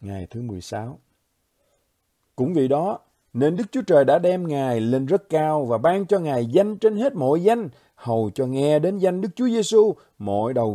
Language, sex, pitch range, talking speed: Vietnamese, male, 115-175 Hz, 195 wpm